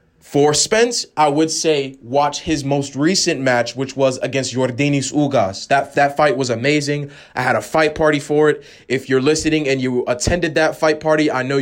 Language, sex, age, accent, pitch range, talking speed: English, male, 20-39, American, 130-165 Hz, 195 wpm